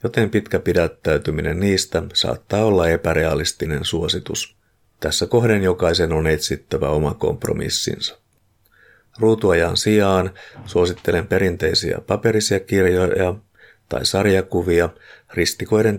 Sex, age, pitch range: male, 50-69, 85-105 Hz